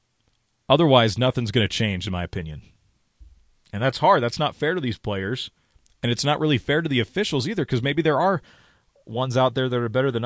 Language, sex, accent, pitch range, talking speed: English, male, American, 110-140 Hz, 215 wpm